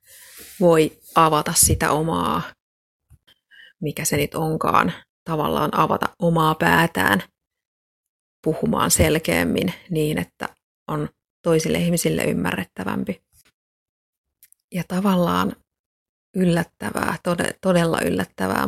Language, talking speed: Finnish, 80 wpm